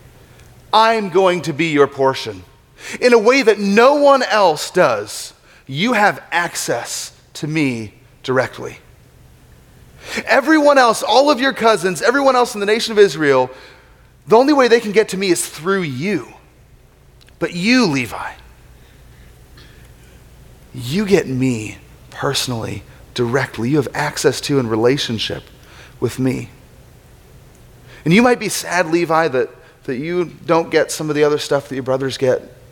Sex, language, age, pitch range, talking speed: male, English, 30-49, 130-195 Hz, 145 wpm